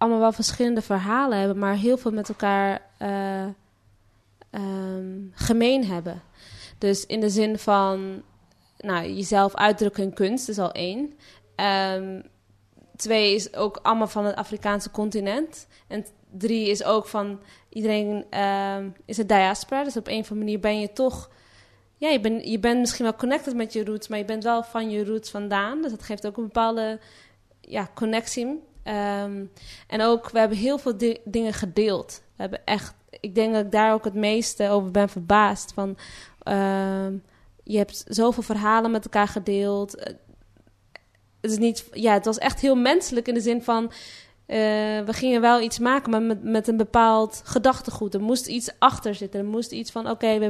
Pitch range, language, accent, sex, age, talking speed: 200-230 Hz, Dutch, Dutch, female, 20-39, 185 wpm